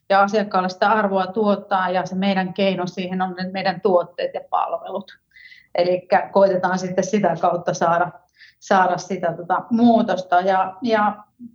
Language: Finnish